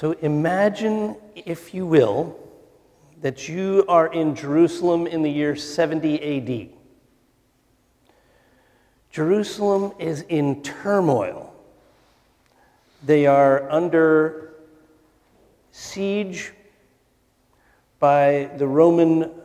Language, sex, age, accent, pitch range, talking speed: English, male, 50-69, American, 145-175 Hz, 80 wpm